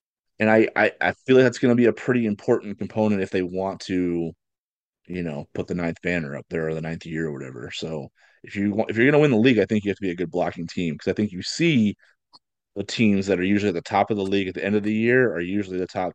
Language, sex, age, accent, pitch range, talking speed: English, male, 30-49, American, 85-105 Hz, 290 wpm